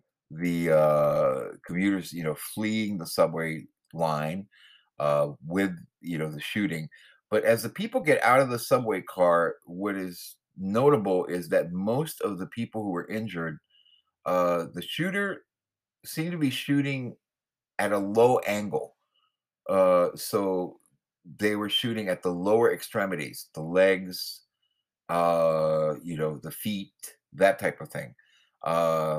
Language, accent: English, American